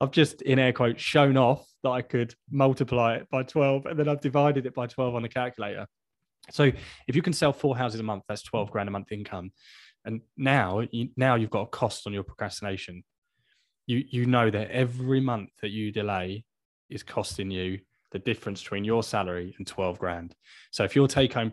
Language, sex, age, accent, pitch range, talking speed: English, male, 20-39, British, 100-130 Hz, 205 wpm